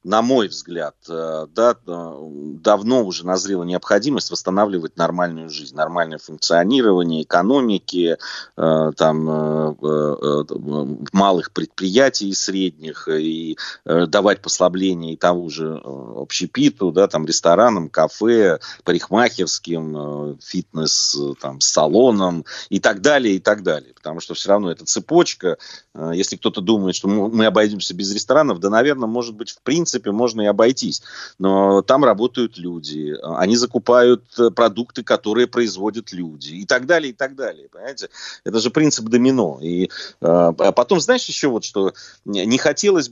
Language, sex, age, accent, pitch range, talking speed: Russian, male, 30-49, native, 85-125 Hz, 130 wpm